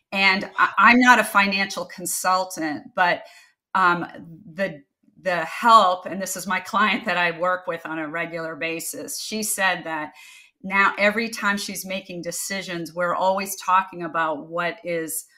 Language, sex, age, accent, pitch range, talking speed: English, female, 40-59, American, 170-200 Hz, 150 wpm